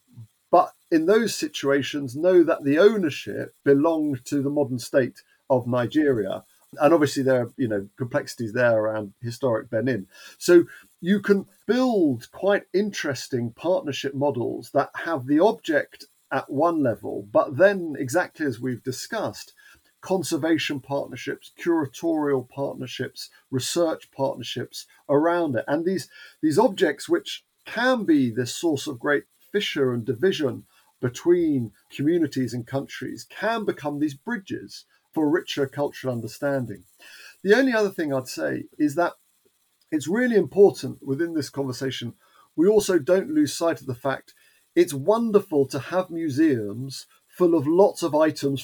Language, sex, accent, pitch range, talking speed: English, male, British, 135-200 Hz, 140 wpm